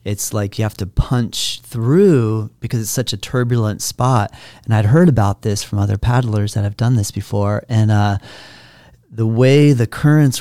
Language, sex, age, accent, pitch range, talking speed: English, male, 40-59, American, 100-120 Hz, 185 wpm